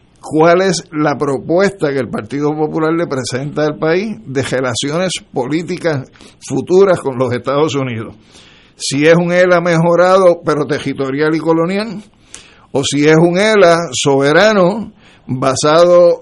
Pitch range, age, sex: 135-175 Hz, 60-79, male